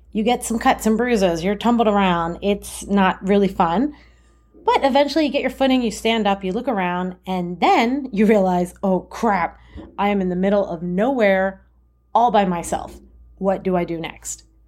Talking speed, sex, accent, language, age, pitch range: 190 wpm, female, American, English, 30-49, 190-255 Hz